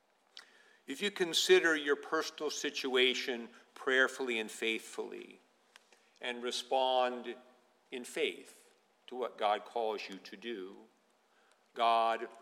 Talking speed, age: 100 wpm, 50-69